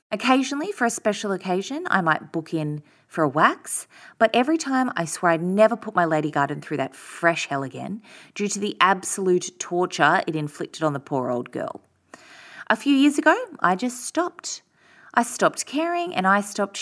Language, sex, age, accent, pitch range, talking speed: English, female, 20-39, Australian, 160-235 Hz, 190 wpm